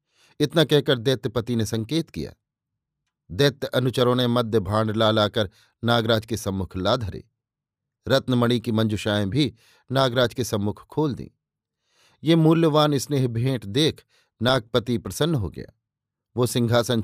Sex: male